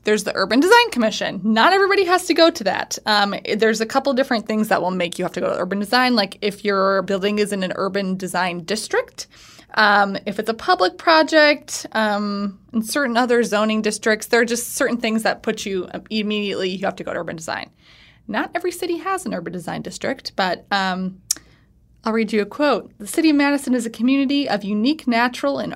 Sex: female